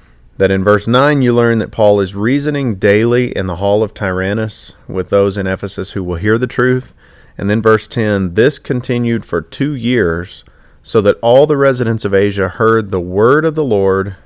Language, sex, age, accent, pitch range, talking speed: English, male, 40-59, American, 95-130 Hz, 200 wpm